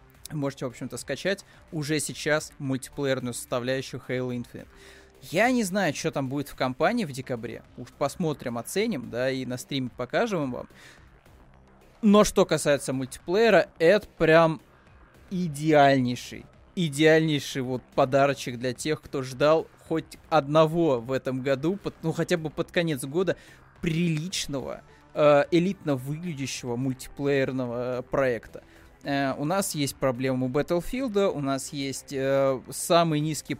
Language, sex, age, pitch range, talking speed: Russian, male, 20-39, 130-165 Hz, 130 wpm